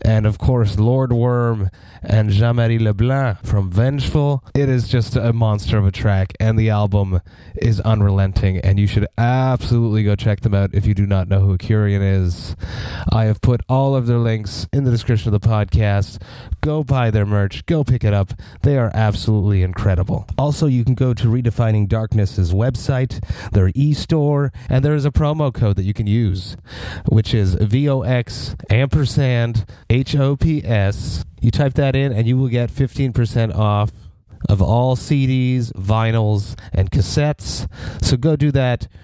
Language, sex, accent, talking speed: English, male, American, 175 wpm